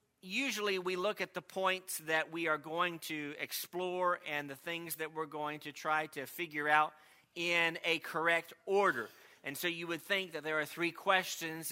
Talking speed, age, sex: 190 wpm, 40-59, male